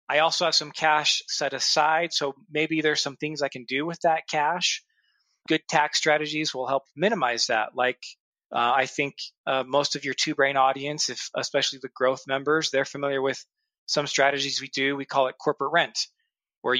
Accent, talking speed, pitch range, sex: American, 195 wpm, 130-155 Hz, male